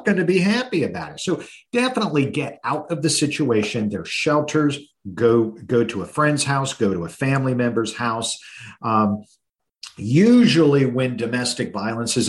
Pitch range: 105-130 Hz